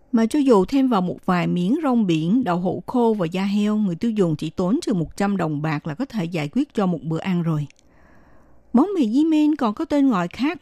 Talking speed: 250 wpm